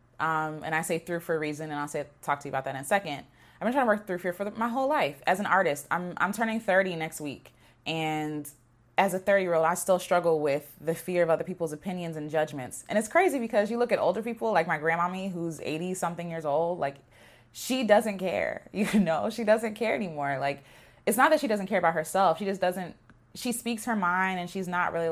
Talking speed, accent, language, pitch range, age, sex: 240 wpm, American, English, 160-210 Hz, 20-39, female